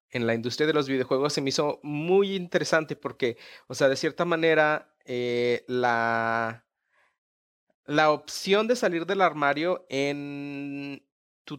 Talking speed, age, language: 140 wpm, 30-49, English